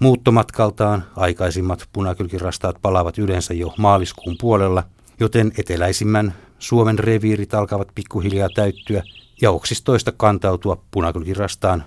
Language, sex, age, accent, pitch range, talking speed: Finnish, male, 60-79, native, 90-110 Hz, 95 wpm